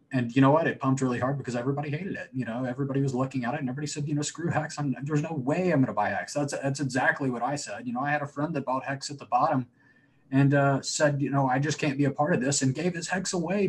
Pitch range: 125-150 Hz